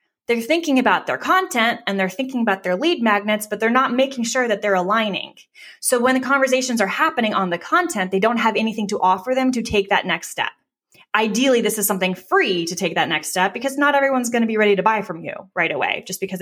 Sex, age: female, 20-39